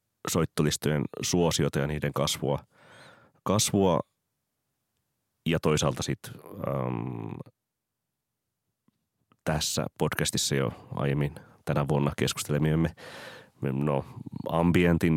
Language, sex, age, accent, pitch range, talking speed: Finnish, male, 30-49, native, 70-85 Hz, 75 wpm